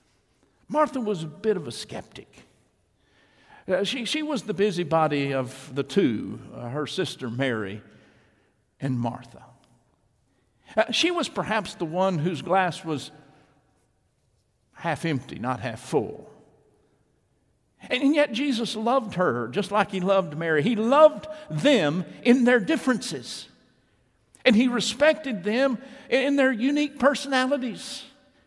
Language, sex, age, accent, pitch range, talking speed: English, male, 60-79, American, 145-225 Hz, 120 wpm